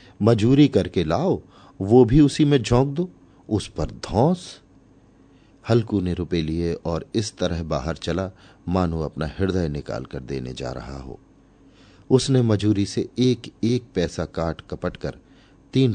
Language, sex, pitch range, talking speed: Hindi, male, 80-105 Hz, 150 wpm